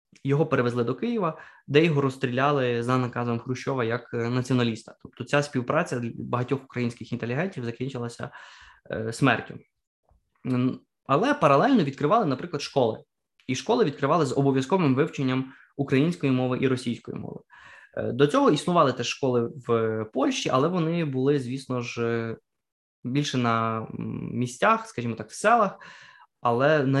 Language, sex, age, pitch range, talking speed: Ukrainian, male, 20-39, 120-140 Hz, 125 wpm